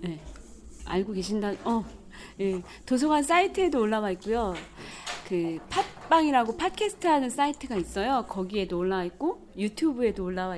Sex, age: female, 30-49